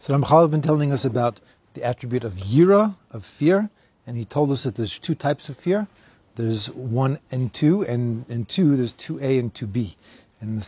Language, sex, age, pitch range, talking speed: English, male, 40-59, 115-150 Hz, 215 wpm